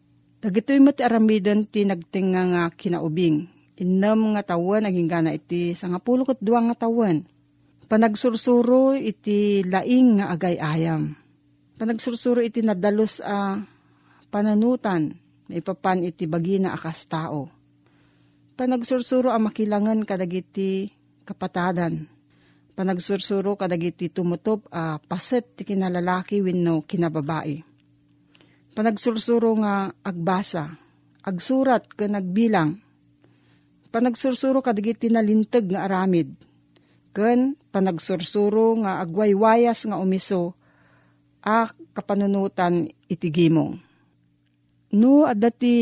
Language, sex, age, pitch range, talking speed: Filipino, female, 40-59, 170-220 Hz, 90 wpm